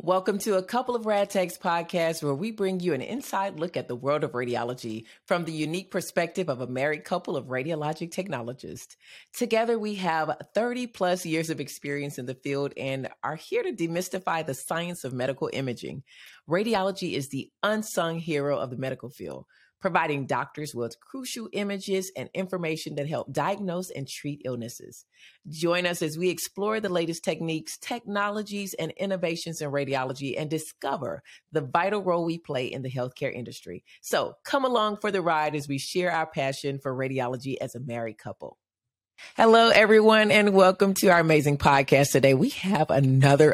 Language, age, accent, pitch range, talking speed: English, 30-49, American, 135-185 Hz, 175 wpm